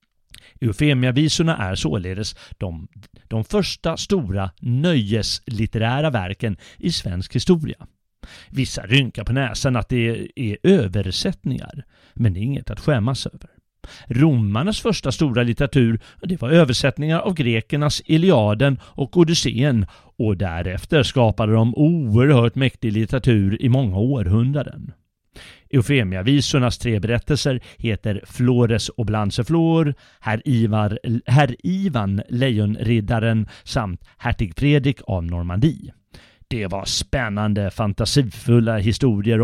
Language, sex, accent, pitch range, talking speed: Swedish, male, native, 105-140 Hz, 110 wpm